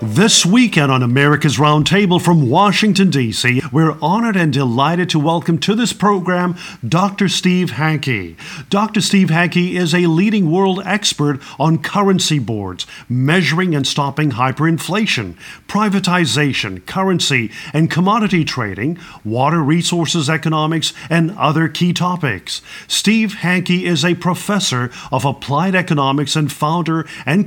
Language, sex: English, male